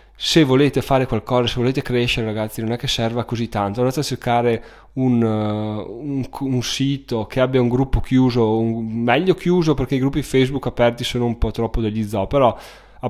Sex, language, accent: male, Italian, native